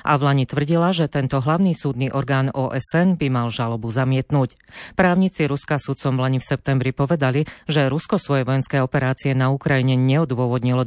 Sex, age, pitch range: female, 40-59, 130-155 Hz